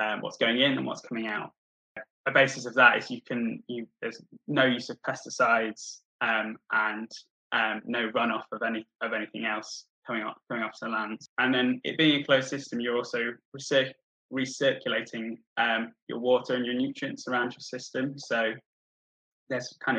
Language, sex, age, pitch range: English, male, 10-29, 115-130 Hz